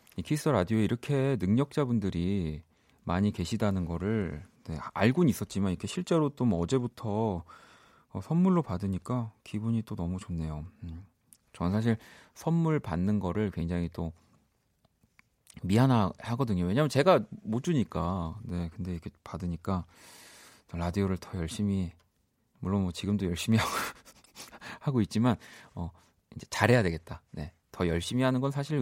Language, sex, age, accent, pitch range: Korean, male, 40-59, native, 90-125 Hz